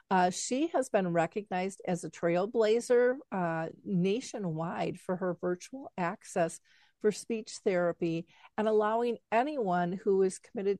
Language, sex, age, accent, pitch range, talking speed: English, female, 50-69, American, 175-210 Hz, 130 wpm